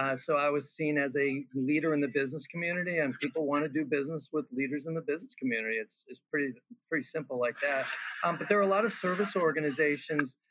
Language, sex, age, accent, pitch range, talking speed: English, male, 40-59, American, 140-165 Hz, 230 wpm